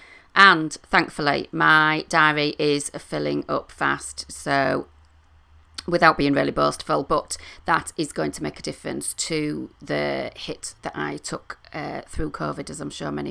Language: English